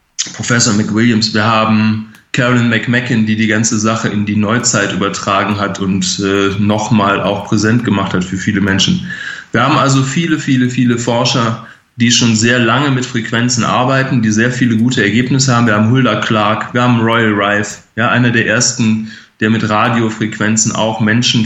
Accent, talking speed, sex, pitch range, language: German, 175 wpm, male, 110-125 Hz, German